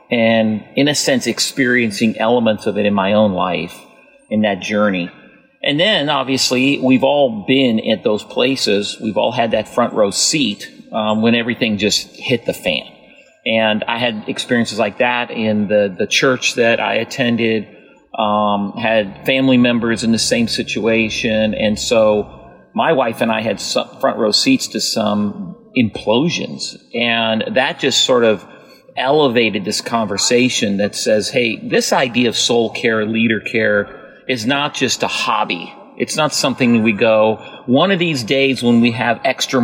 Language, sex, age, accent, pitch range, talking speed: English, male, 40-59, American, 110-125 Hz, 165 wpm